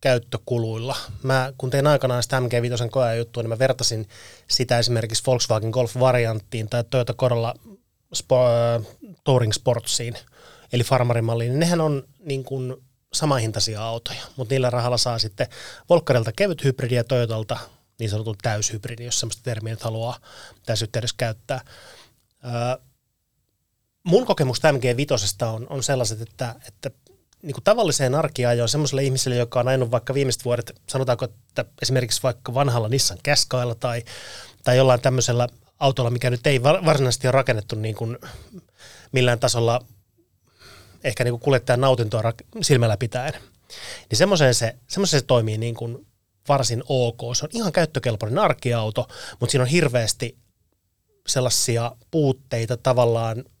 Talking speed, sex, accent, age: 130 wpm, male, native, 20-39